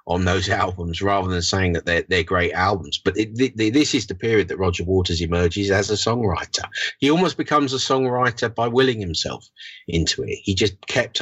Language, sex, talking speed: English, male, 210 wpm